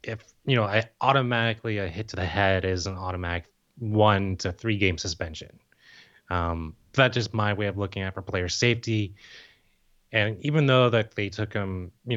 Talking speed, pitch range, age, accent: 185 wpm, 90-110 Hz, 20-39, American